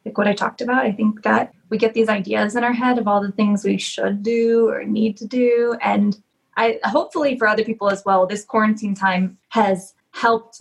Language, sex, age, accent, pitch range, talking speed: English, female, 20-39, American, 195-240 Hz, 220 wpm